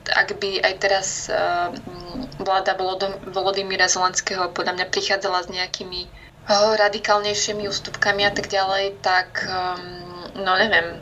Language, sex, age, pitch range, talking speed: Slovak, female, 20-39, 185-200 Hz, 125 wpm